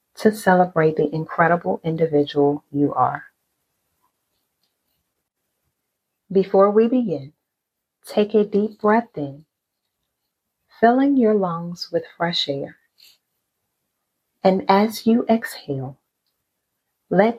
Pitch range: 155-210 Hz